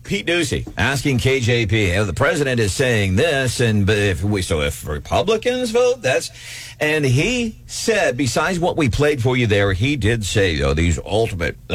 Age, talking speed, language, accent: 50-69, 175 wpm, English, American